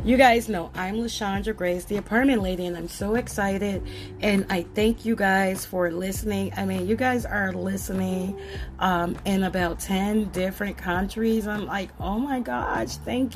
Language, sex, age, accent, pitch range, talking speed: English, female, 30-49, American, 180-220 Hz, 170 wpm